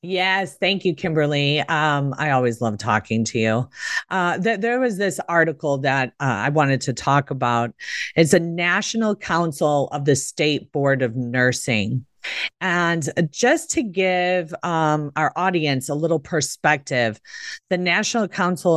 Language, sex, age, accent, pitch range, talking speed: English, female, 40-59, American, 135-170 Hz, 150 wpm